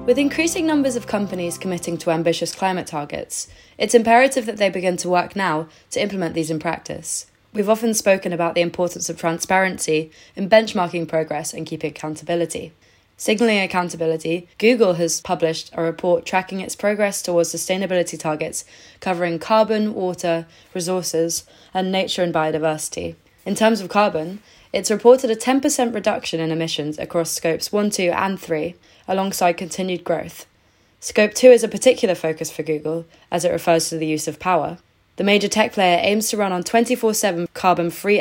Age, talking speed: 20-39, 165 wpm